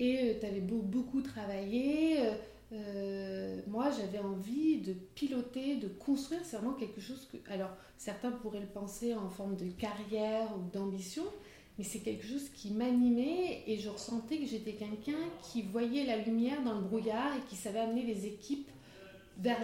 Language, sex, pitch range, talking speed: French, female, 210-260 Hz, 170 wpm